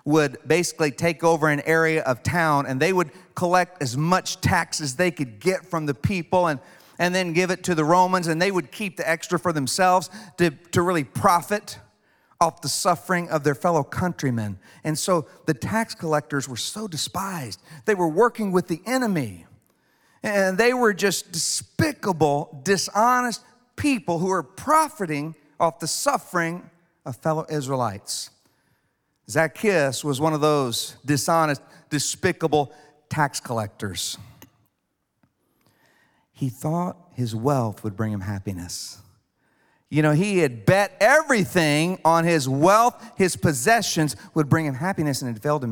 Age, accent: 50-69, American